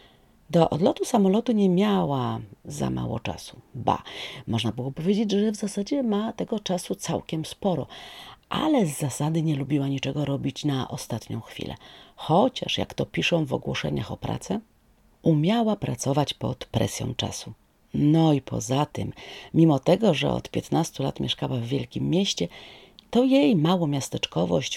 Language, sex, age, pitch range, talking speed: Polish, female, 40-59, 135-195 Hz, 150 wpm